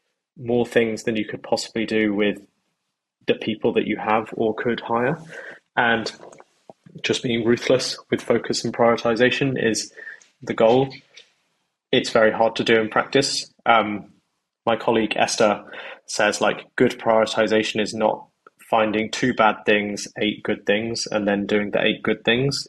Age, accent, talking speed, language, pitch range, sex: 20-39, British, 155 wpm, English, 105-120 Hz, male